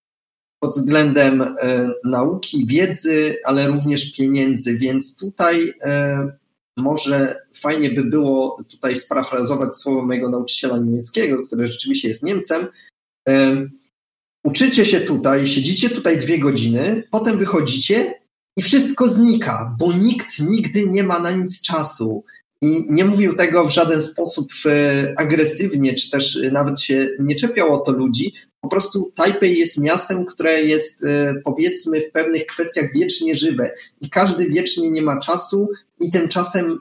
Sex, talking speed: male, 130 wpm